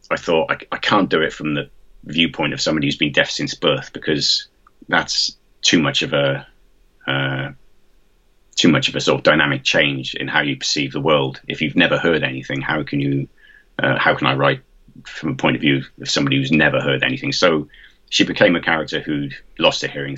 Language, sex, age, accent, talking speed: English, male, 30-49, British, 210 wpm